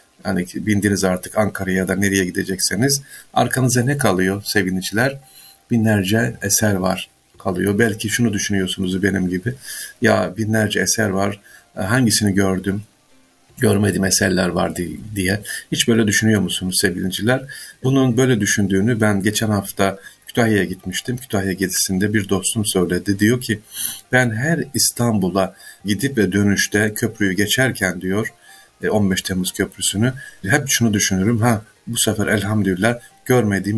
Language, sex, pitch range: Turkish, male, 95-115 Hz